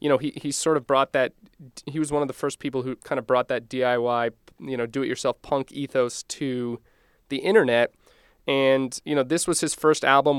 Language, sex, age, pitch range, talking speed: English, male, 30-49, 120-140 Hz, 215 wpm